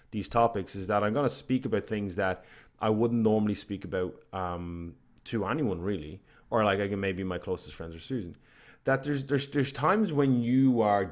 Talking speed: 210 wpm